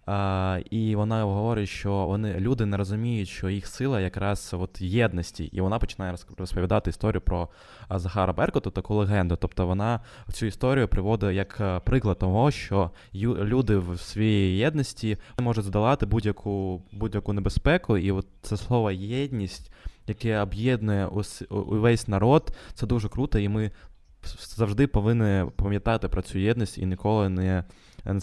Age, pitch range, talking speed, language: 20-39, 95-110 Hz, 140 wpm, Ukrainian